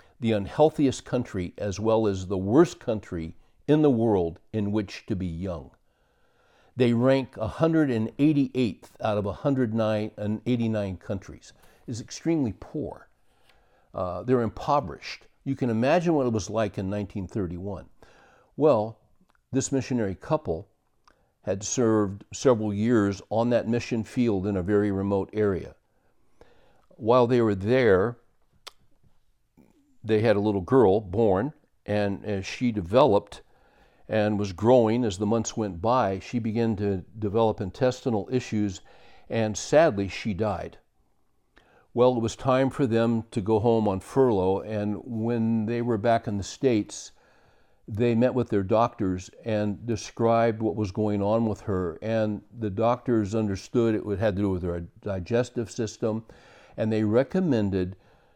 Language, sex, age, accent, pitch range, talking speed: English, male, 60-79, American, 100-120 Hz, 140 wpm